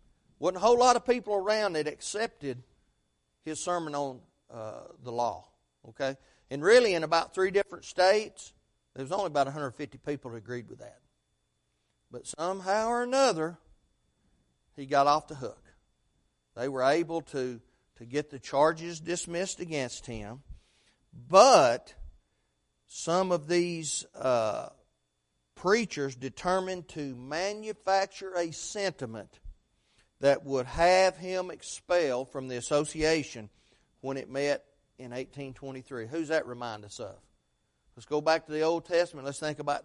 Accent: American